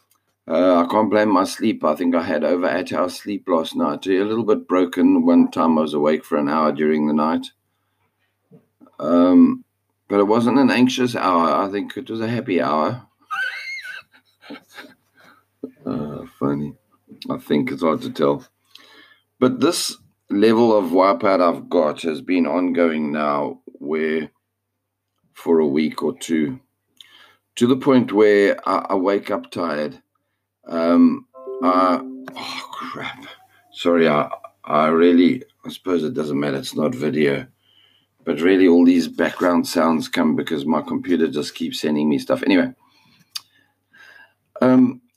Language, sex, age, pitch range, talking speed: English, male, 50-69, 85-130 Hz, 150 wpm